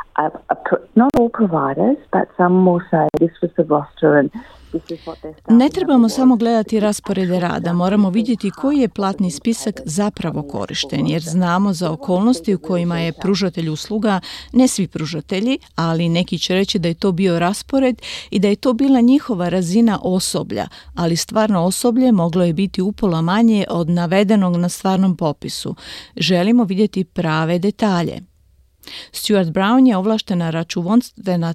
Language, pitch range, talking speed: Croatian, 170-215 Hz, 125 wpm